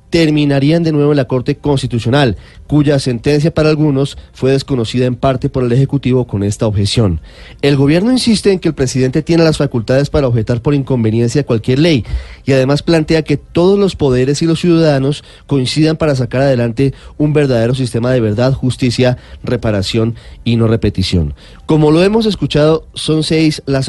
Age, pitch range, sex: 30-49, 120-150 Hz, male